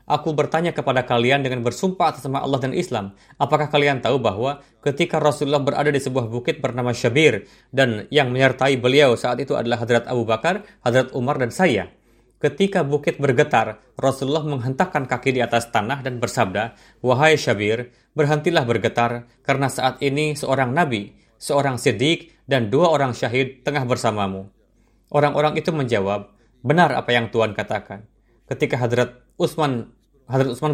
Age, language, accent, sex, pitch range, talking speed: 30-49, Indonesian, native, male, 115-140 Hz, 150 wpm